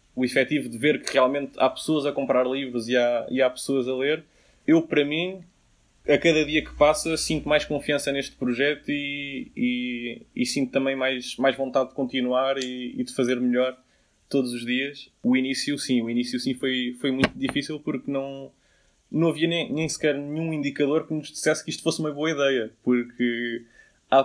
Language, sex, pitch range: Portuguese, male, 130-150 Hz